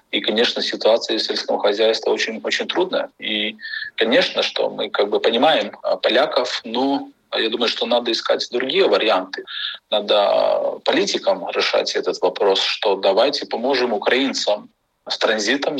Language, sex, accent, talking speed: Russian, male, native, 135 wpm